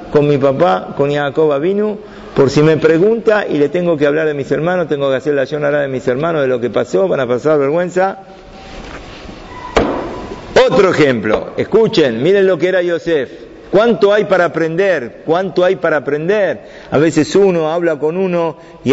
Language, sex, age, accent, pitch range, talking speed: Spanish, male, 50-69, Argentinian, 145-185 Hz, 180 wpm